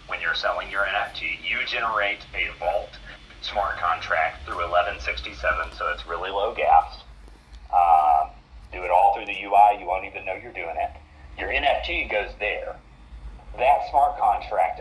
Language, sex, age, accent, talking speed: English, male, 40-59, American, 160 wpm